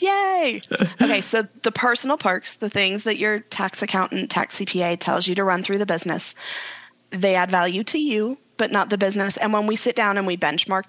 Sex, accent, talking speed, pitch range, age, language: female, American, 210 wpm, 185-220 Hz, 20-39, English